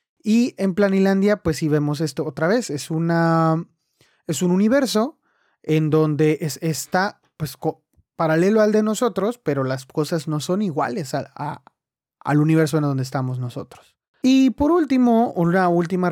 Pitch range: 145-205 Hz